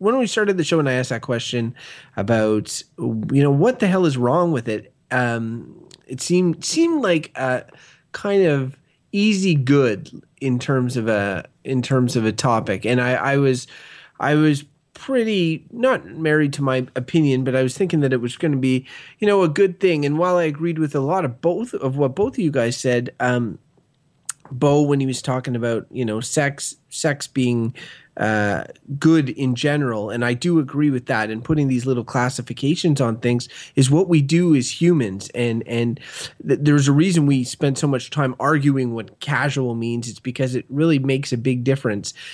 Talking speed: 200 wpm